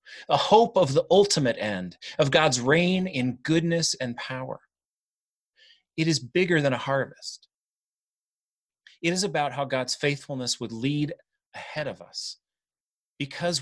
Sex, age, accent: male, 30-49, American